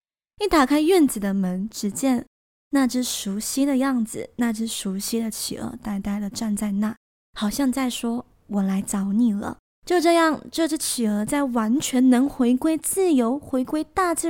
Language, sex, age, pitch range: Chinese, female, 20-39, 215-280 Hz